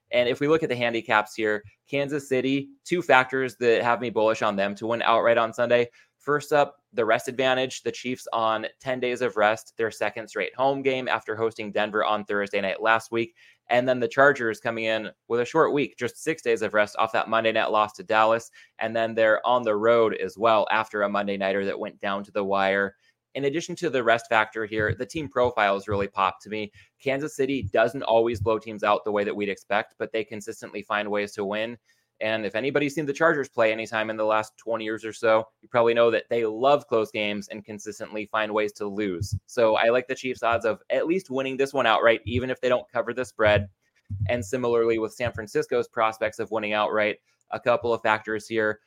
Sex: male